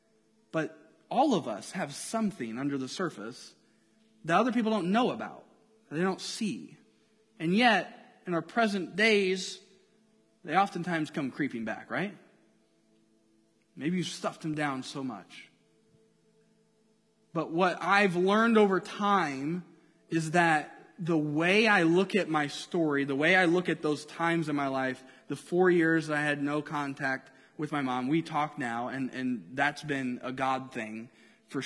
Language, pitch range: English, 125-190 Hz